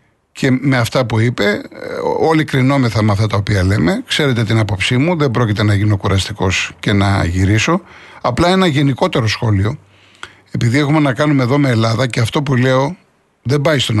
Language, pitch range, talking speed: Greek, 110-145 Hz, 180 wpm